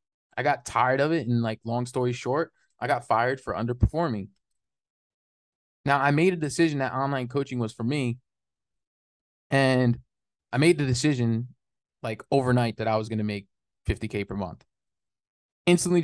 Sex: male